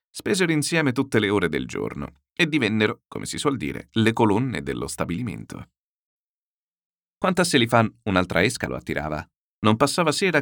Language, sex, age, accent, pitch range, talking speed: Italian, male, 40-59, native, 85-130 Hz, 160 wpm